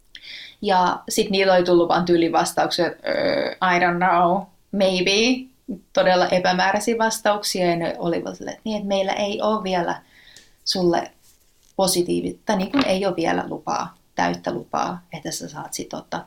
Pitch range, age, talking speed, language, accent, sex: 175-230 Hz, 30-49, 150 wpm, Finnish, native, female